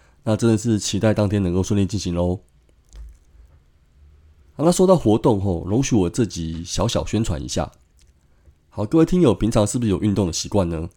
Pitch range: 85-110 Hz